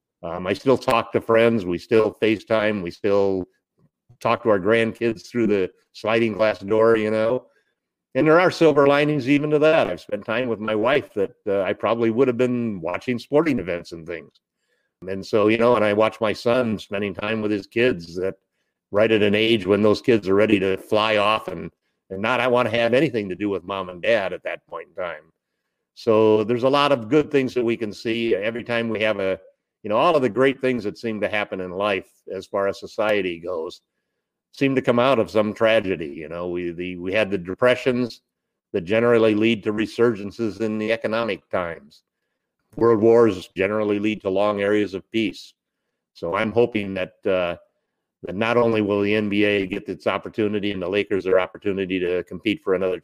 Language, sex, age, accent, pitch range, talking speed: English, male, 50-69, American, 100-120 Hz, 210 wpm